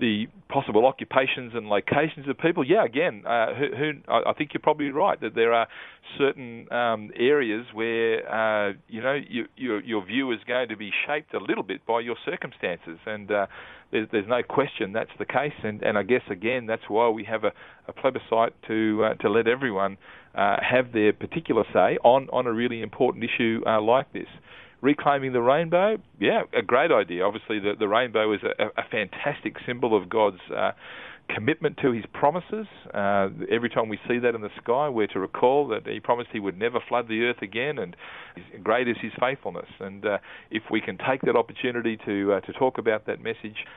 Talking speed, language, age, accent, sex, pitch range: 205 wpm, English, 40-59, Australian, male, 105-130 Hz